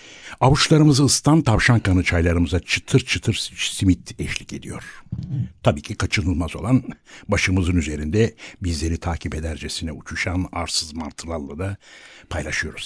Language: Turkish